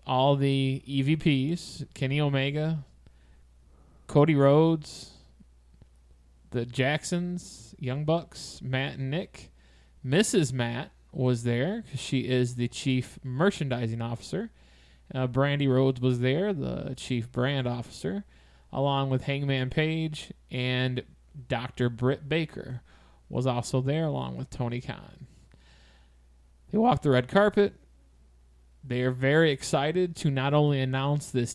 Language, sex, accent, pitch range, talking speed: English, male, American, 120-150 Hz, 120 wpm